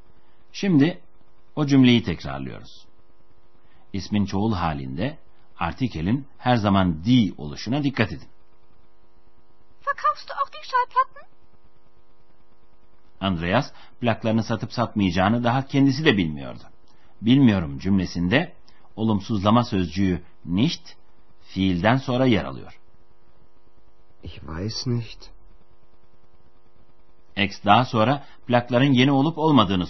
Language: Turkish